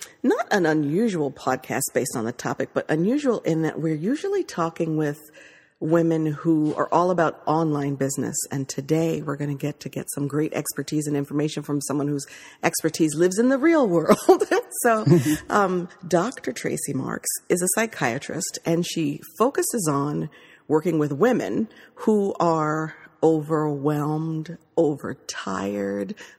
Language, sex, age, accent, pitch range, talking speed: English, female, 50-69, American, 150-185 Hz, 145 wpm